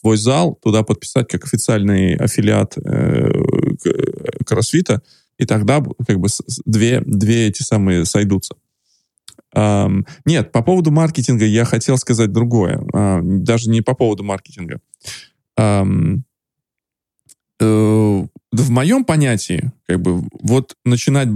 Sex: male